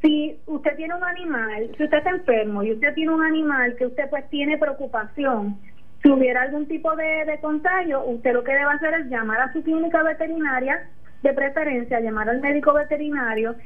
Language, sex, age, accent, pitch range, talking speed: Spanish, female, 20-39, American, 250-305 Hz, 190 wpm